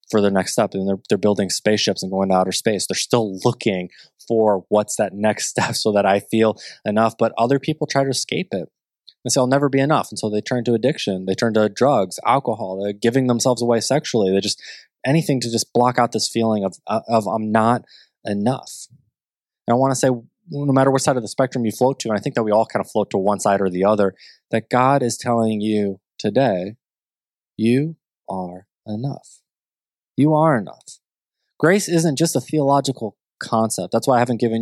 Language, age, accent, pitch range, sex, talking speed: English, 20-39, American, 110-150 Hz, male, 210 wpm